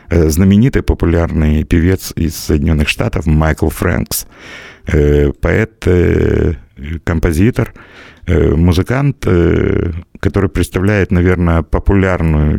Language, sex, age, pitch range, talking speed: Russian, male, 50-69, 80-100 Hz, 70 wpm